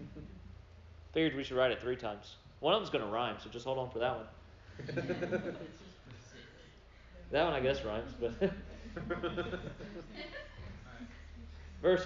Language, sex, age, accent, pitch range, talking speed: English, male, 40-59, American, 165-230 Hz, 130 wpm